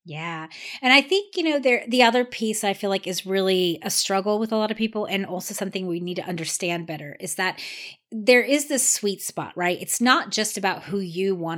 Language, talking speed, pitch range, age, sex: English, 230 wpm, 170-215 Hz, 30-49, female